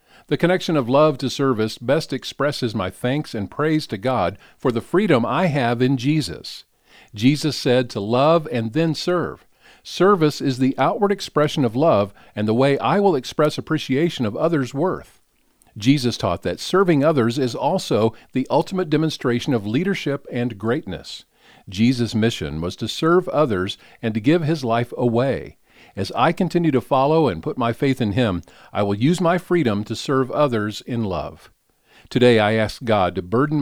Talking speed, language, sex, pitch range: 175 wpm, English, male, 110-150 Hz